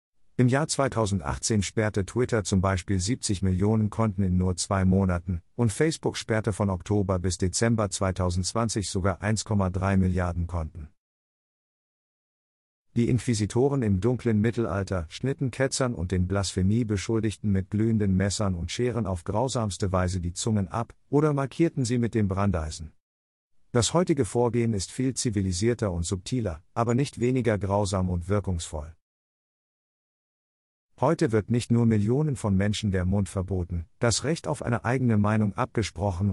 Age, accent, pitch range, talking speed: 50-69, German, 95-120 Hz, 140 wpm